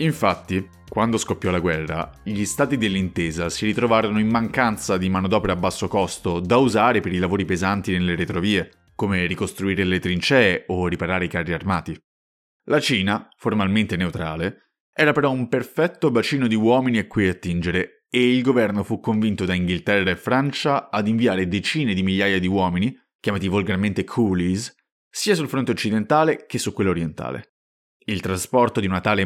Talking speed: 165 wpm